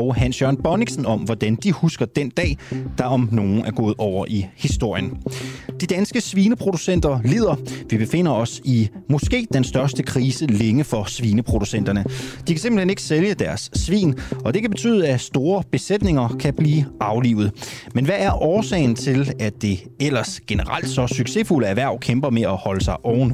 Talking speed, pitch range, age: 170 wpm, 115-155 Hz, 30-49